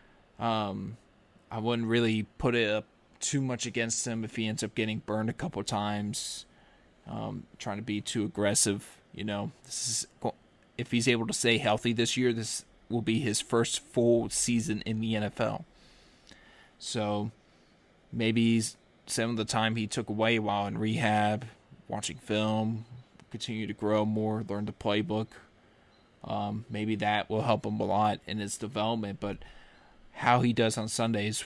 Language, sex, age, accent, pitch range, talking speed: English, male, 20-39, American, 105-120 Hz, 165 wpm